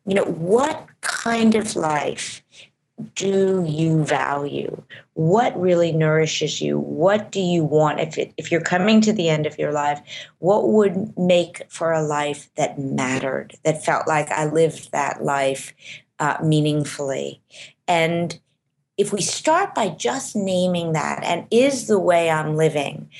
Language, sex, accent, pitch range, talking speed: English, female, American, 145-180 Hz, 155 wpm